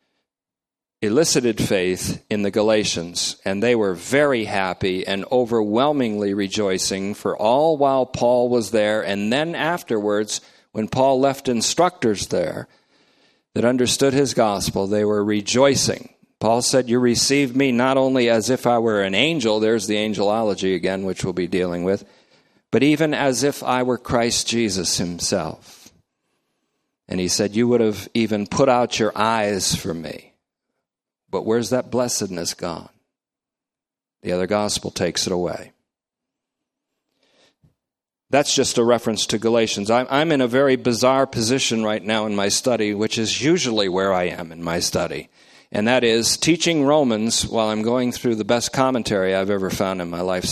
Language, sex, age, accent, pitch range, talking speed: English, male, 50-69, American, 100-125 Hz, 160 wpm